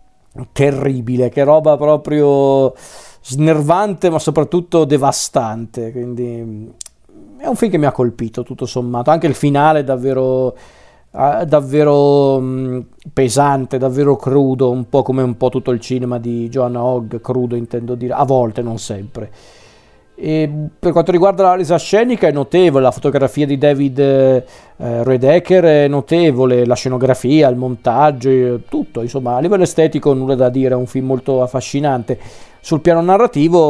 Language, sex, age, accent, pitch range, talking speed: Italian, male, 40-59, native, 125-150 Hz, 145 wpm